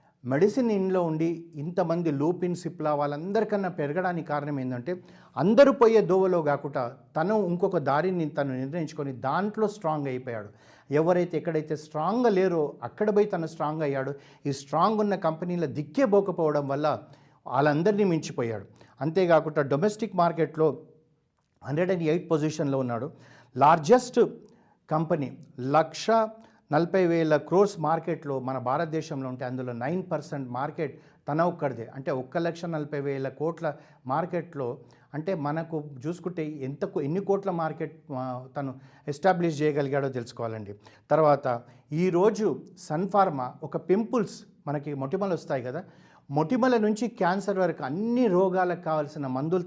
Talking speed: 120 wpm